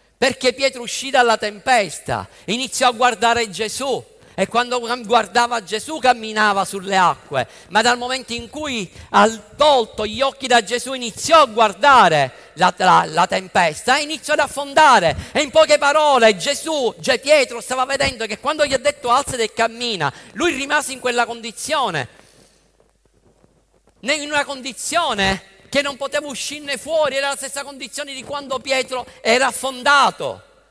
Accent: native